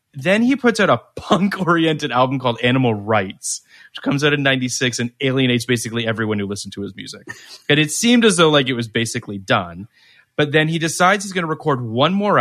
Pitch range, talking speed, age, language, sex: 115-155 Hz, 215 wpm, 30-49, English, male